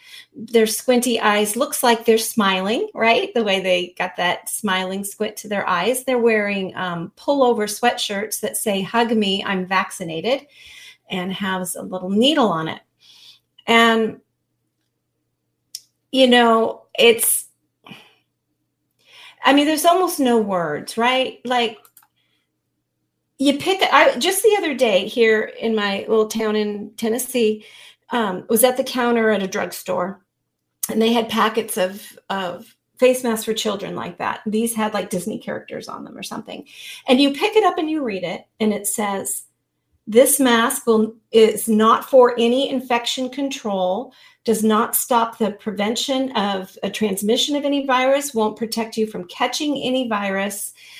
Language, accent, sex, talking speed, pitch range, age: English, American, female, 155 wpm, 200-255 Hz, 40-59